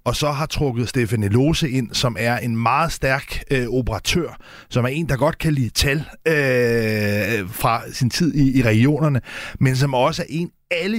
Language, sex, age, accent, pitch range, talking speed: Danish, male, 30-49, native, 120-150 Hz, 190 wpm